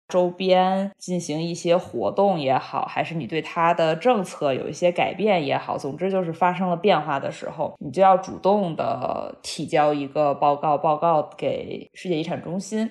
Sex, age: female, 20-39